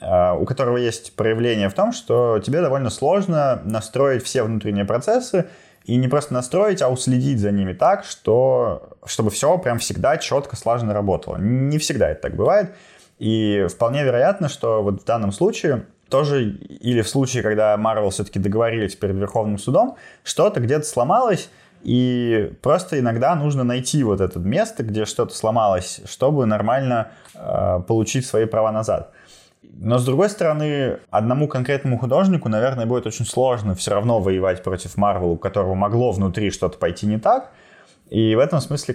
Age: 20-39